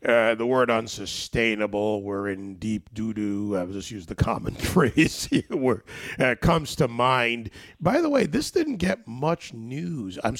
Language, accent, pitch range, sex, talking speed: English, American, 105-130 Hz, male, 165 wpm